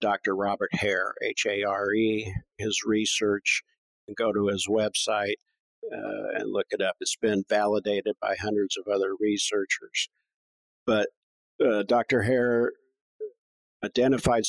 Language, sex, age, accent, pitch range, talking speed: English, male, 50-69, American, 100-125 Hz, 115 wpm